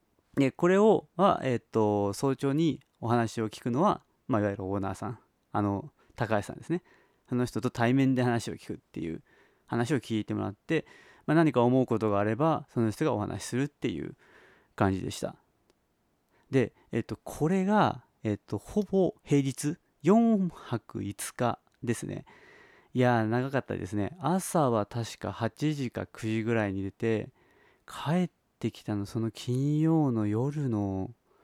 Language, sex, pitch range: Japanese, male, 105-135 Hz